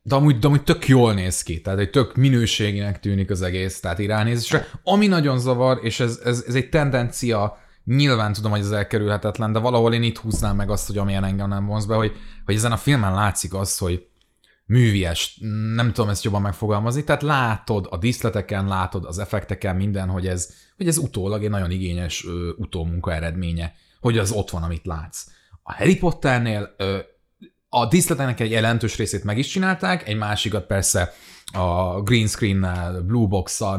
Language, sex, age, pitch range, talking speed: Hungarian, male, 30-49, 95-125 Hz, 180 wpm